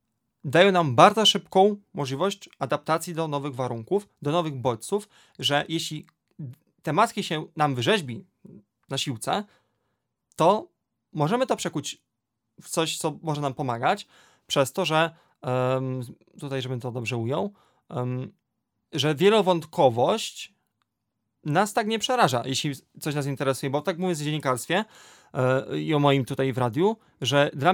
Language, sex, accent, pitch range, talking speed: Polish, male, native, 130-180 Hz, 135 wpm